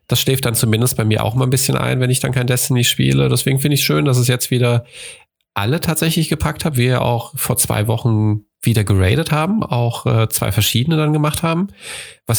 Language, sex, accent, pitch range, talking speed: German, male, German, 110-135 Hz, 220 wpm